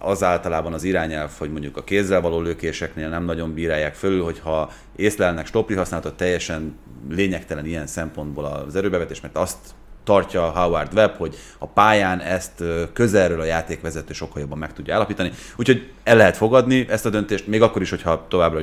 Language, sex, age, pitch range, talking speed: Hungarian, male, 30-49, 80-100 Hz, 170 wpm